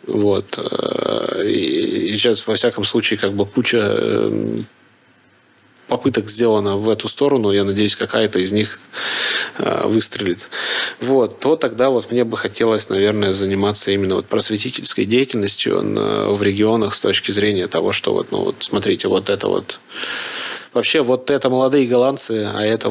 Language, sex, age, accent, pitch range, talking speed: Russian, male, 20-39, native, 105-135 Hz, 140 wpm